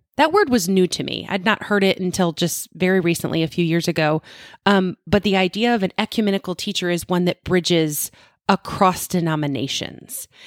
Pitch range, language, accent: 170-205 Hz, English, American